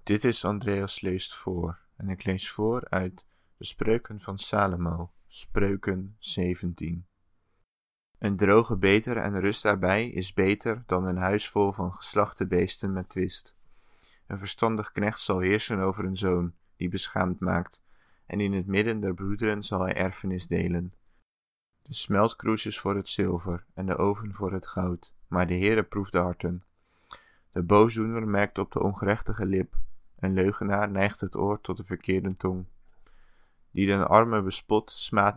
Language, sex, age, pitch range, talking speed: English, male, 20-39, 90-100 Hz, 160 wpm